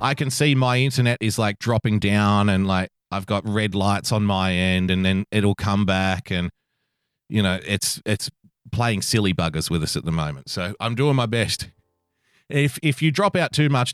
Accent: Australian